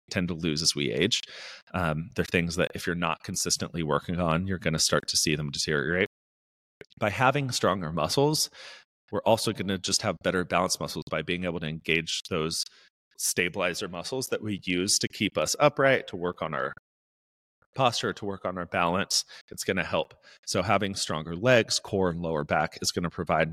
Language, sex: English, male